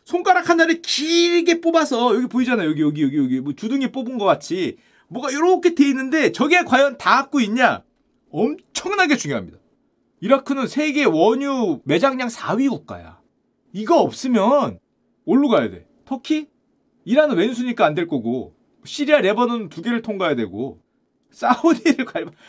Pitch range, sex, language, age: 205-285 Hz, male, Korean, 30-49